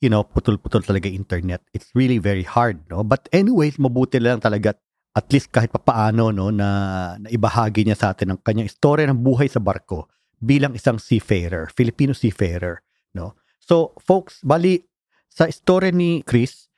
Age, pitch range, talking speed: 50-69, 100-130 Hz, 160 wpm